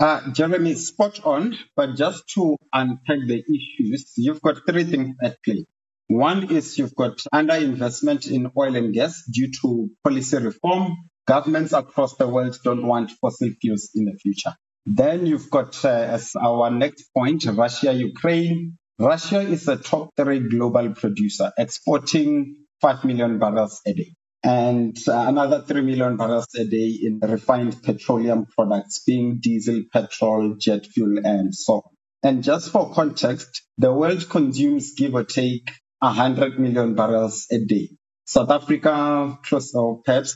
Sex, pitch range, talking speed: male, 115-155 Hz, 145 wpm